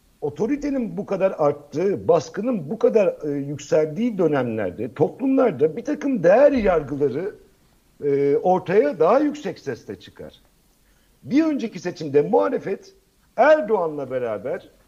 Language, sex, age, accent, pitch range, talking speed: Turkish, male, 60-79, native, 155-235 Hz, 110 wpm